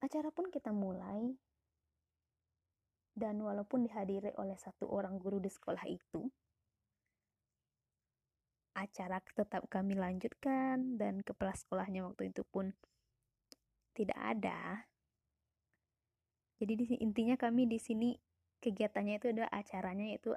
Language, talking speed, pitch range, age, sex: Indonesian, 110 wpm, 175-235 Hz, 20-39, female